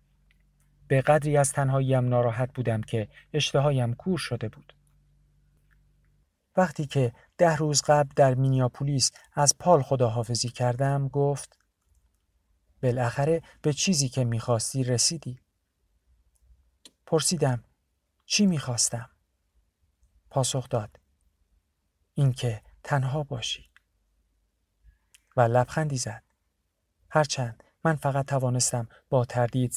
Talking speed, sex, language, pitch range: 95 wpm, male, Persian, 90-140 Hz